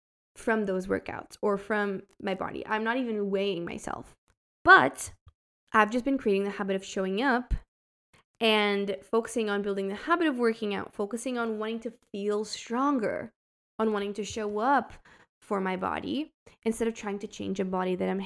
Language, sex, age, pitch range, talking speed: English, female, 10-29, 200-245 Hz, 175 wpm